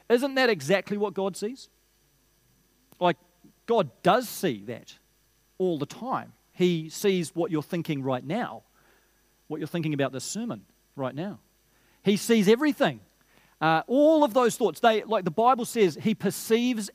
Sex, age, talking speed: male, 40-59, 155 wpm